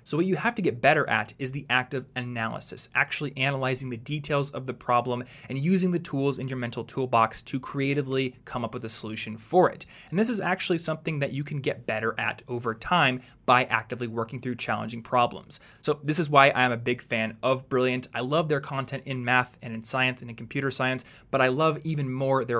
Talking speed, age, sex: 230 wpm, 20-39, male